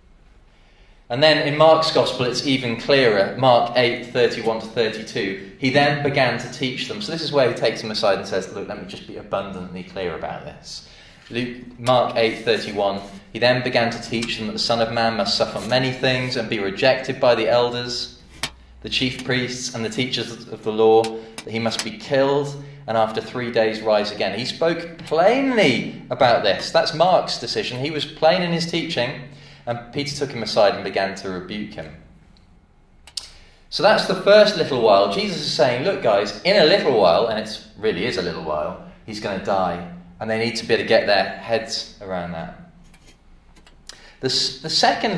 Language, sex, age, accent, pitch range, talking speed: English, male, 20-39, British, 110-135 Hz, 195 wpm